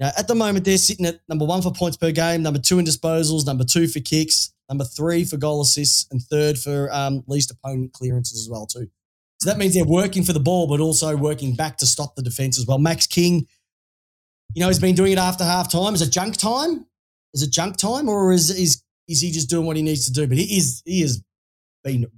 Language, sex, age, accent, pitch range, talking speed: English, male, 20-39, Australian, 125-170 Hz, 245 wpm